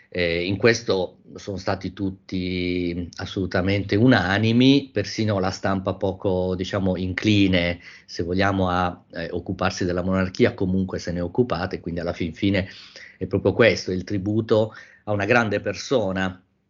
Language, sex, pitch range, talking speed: Italian, male, 95-110 Hz, 140 wpm